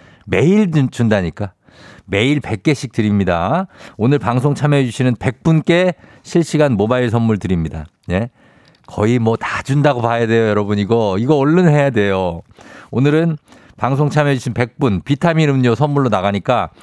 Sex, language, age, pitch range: male, Korean, 50-69, 110-160 Hz